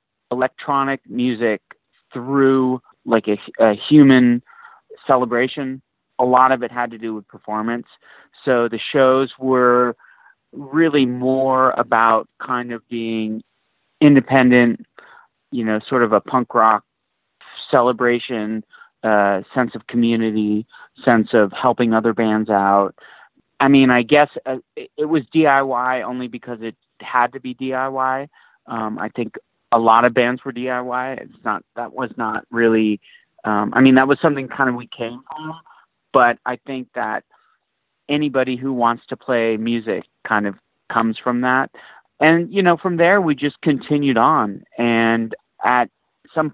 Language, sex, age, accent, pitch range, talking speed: English, male, 30-49, American, 115-135 Hz, 145 wpm